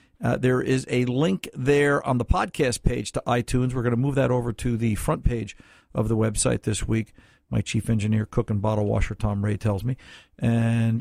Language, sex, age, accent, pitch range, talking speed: English, male, 50-69, American, 105-130 Hz, 215 wpm